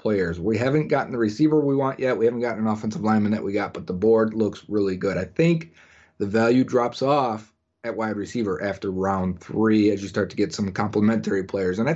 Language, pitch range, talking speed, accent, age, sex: English, 100-125 Hz, 230 wpm, American, 30-49, male